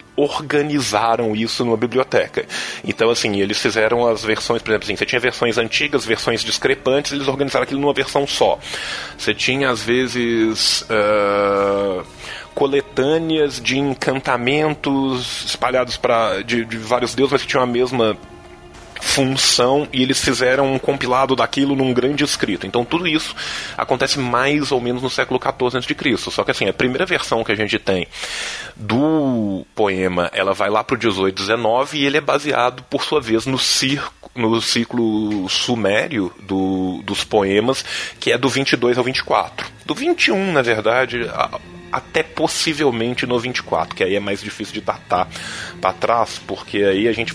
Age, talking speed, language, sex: 20-39, 155 wpm, Portuguese, male